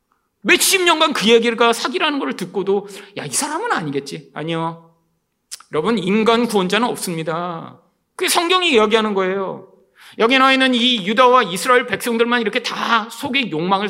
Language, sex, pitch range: Korean, male, 140-235 Hz